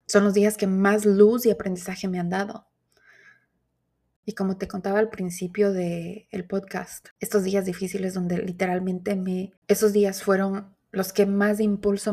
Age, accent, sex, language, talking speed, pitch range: 20-39, Mexican, female, Spanish, 160 wpm, 185-210 Hz